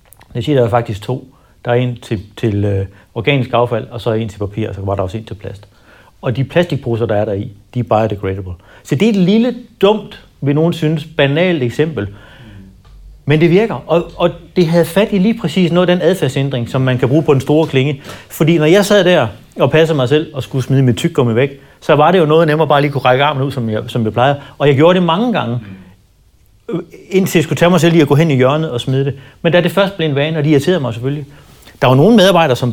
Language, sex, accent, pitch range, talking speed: Danish, male, native, 115-165 Hz, 265 wpm